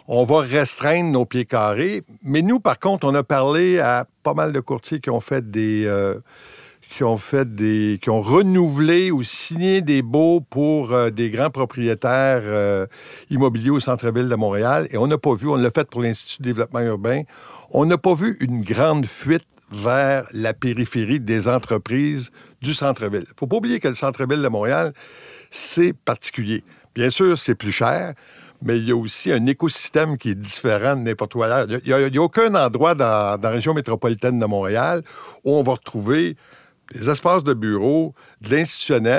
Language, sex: French, male